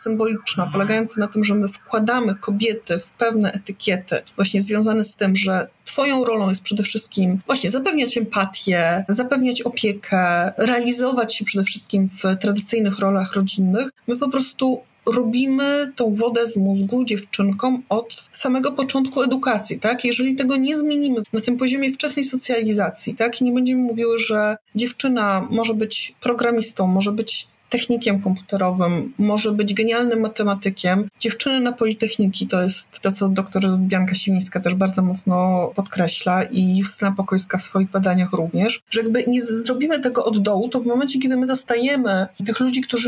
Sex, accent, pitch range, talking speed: female, native, 195-255 Hz, 155 wpm